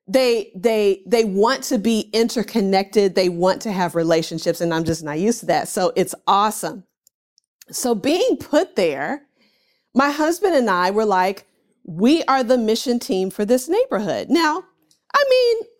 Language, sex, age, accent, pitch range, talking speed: English, female, 40-59, American, 190-265 Hz, 165 wpm